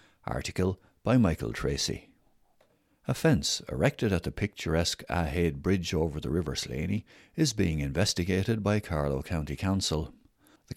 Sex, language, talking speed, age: male, English, 135 wpm, 60-79